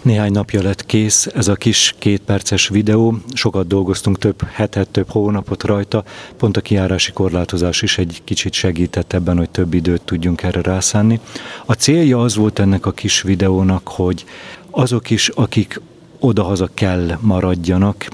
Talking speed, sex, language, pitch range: 155 wpm, male, Hungarian, 90-110 Hz